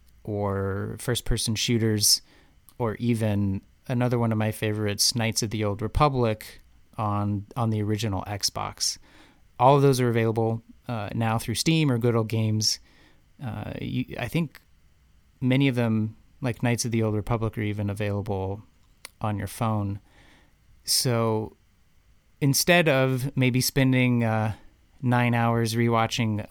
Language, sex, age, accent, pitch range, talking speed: English, male, 30-49, American, 105-120 Hz, 140 wpm